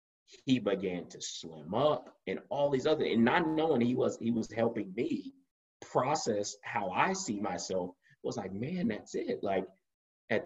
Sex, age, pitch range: male, 30-49, 95-120 Hz